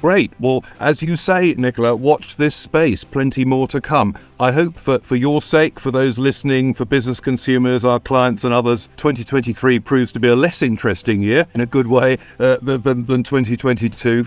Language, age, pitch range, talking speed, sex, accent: English, 50-69, 110-130 Hz, 190 wpm, male, British